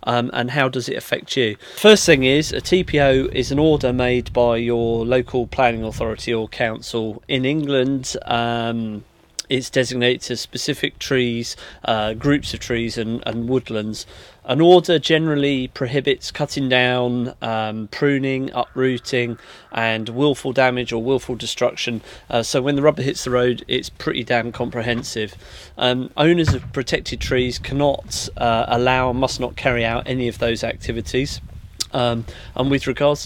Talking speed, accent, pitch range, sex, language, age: 155 wpm, British, 115-135 Hz, male, English, 30-49